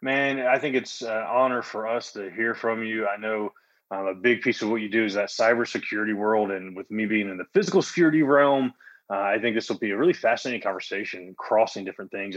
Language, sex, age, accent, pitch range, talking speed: English, male, 20-39, American, 105-130 Hz, 235 wpm